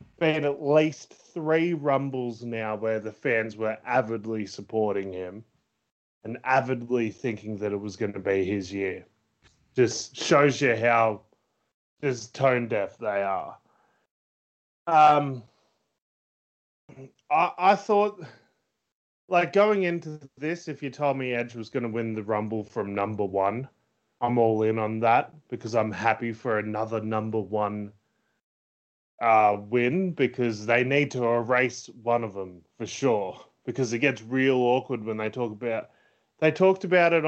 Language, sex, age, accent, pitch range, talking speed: English, male, 20-39, Australian, 110-140 Hz, 150 wpm